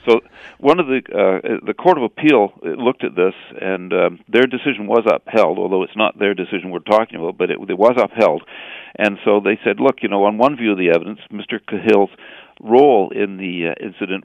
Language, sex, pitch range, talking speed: English, male, 95-125 Hz, 225 wpm